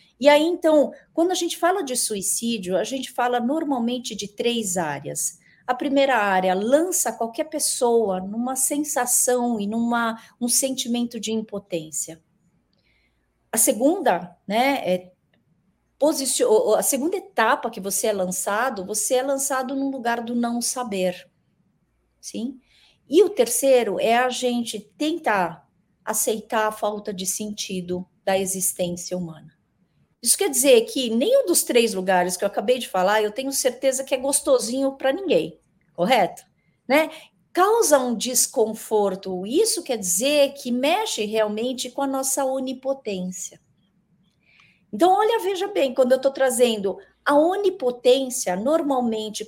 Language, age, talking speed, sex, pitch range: Portuguese, 40-59, 135 wpm, female, 195-275 Hz